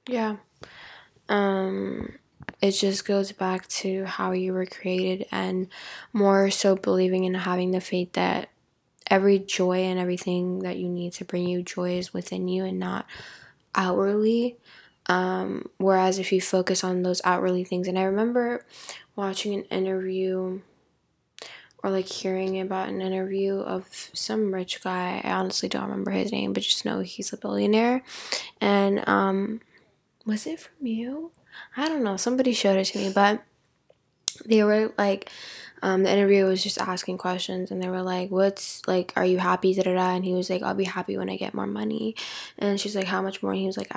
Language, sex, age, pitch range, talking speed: English, female, 10-29, 180-200 Hz, 175 wpm